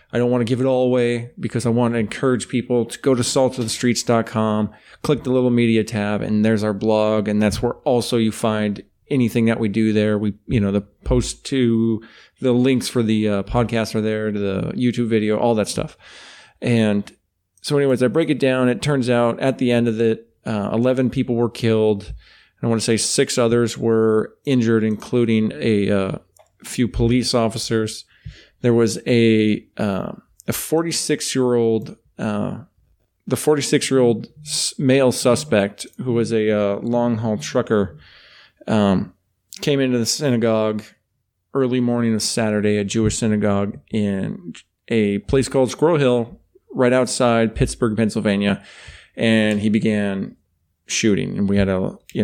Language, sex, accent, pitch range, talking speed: English, male, American, 105-125 Hz, 170 wpm